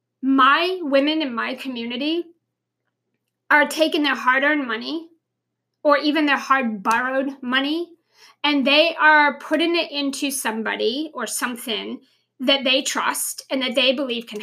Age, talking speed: 40-59, 140 wpm